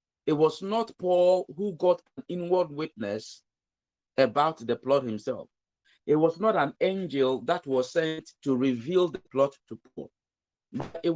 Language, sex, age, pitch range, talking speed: English, male, 50-69, 140-200 Hz, 150 wpm